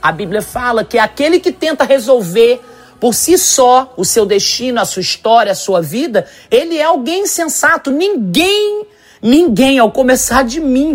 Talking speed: 165 wpm